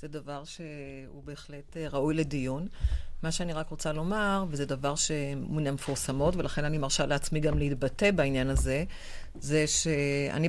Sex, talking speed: female, 150 wpm